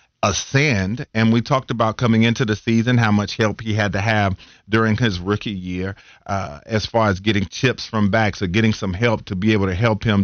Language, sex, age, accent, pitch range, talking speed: English, male, 40-59, American, 100-115 Hz, 225 wpm